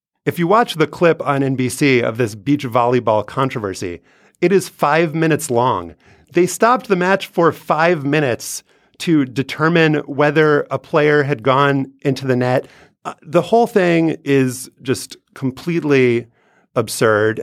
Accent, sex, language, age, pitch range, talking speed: American, male, English, 30-49, 115-160 Hz, 140 wpm